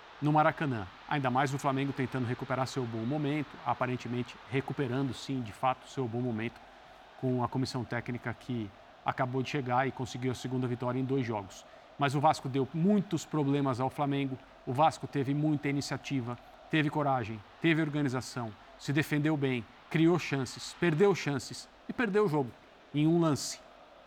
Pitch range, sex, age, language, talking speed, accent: 130-155 Hz, male, 50-69, Portuguese, 165 wpm, Brazilian